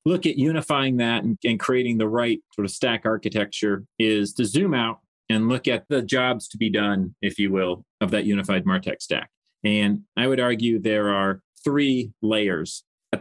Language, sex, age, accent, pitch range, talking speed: English, male, 30-49, American, 100-125 Hz, 190 wpm